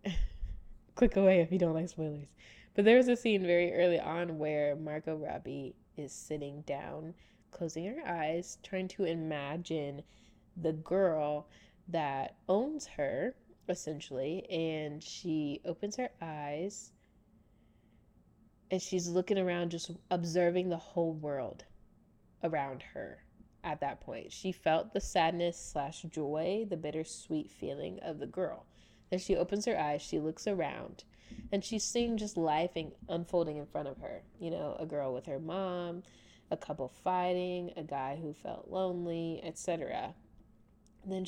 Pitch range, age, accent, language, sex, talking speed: 155-185 Hz, 20-39, American, English, female, 140 wpm